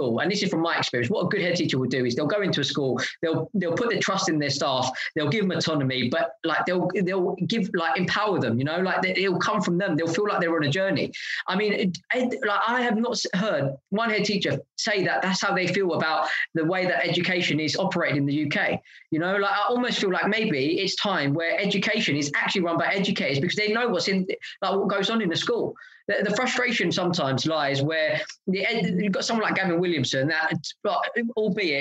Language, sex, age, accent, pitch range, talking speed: English, male, 20-39, British, 165-225 Hz, 235 wpm